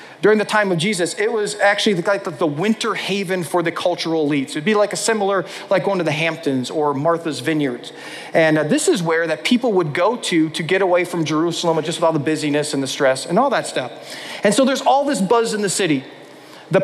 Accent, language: American, English